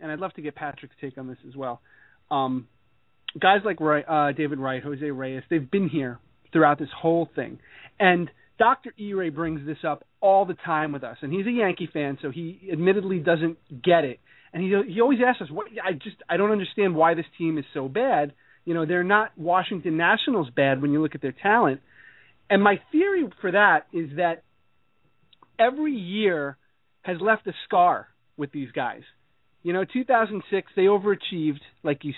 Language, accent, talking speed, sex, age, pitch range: English, American, 190 wpm, male, 30-49, 155-210 Hz